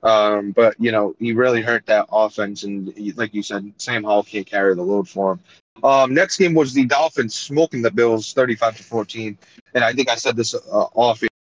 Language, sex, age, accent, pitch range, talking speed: English, male, 30-49, American, 105-125 Hz, 220 wpm